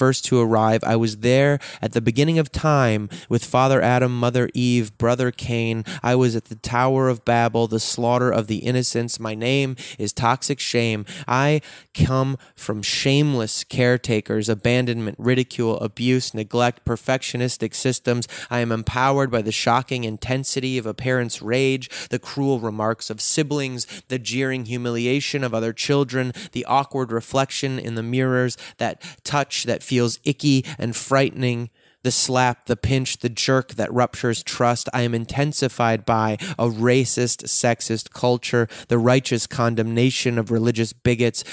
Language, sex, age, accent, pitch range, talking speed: English, male, 20-39, American, 115-130 Hz, 150 wpm